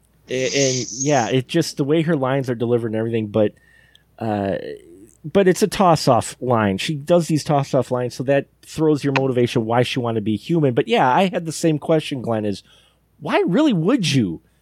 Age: 30-49